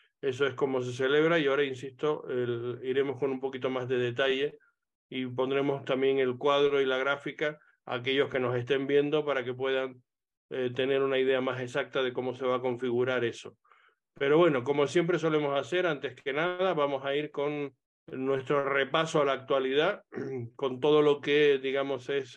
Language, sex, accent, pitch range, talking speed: Spanish, male, Argentinian, 130-150 Hz, 190 wpm